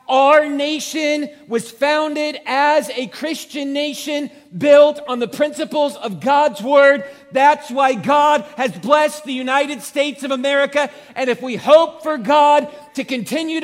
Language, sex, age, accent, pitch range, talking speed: English, male, 40-59, American, 220-290 Hz, 145 wpm